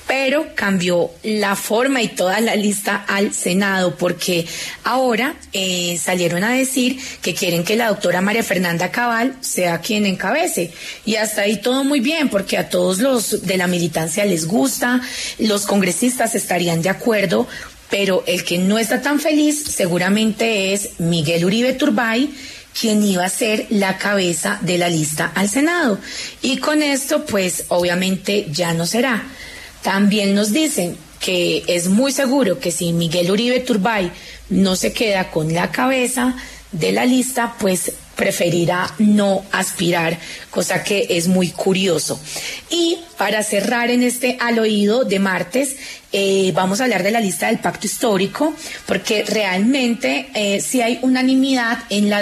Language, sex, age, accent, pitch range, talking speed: Spanish, female, 30-49, Colombian, 185-240 Hz, 155 wpm